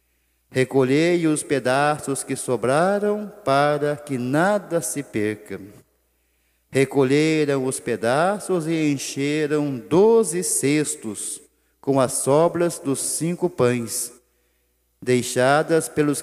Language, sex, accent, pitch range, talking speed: Portuguese, male, Brazilian, 125-165 Hz, 90 wpm